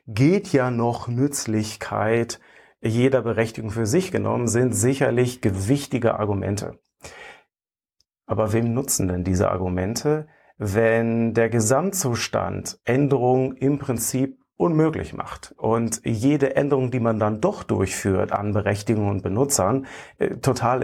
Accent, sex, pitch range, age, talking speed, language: German, male, 105-130 Hz, 40-59, 115 wpm, German